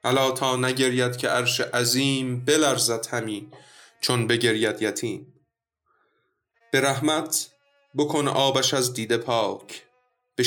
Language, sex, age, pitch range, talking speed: Persian, male, 20-39, 120-145 Hz, 105 wpm